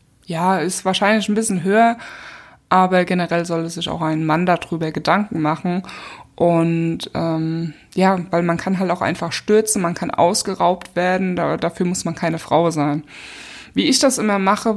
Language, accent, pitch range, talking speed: German, German, 170-205 Hz, 175 wpm